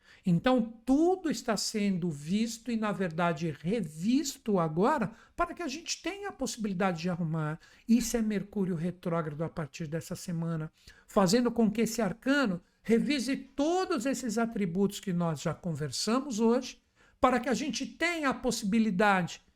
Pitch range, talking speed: 175-240 Hz, 145 wpm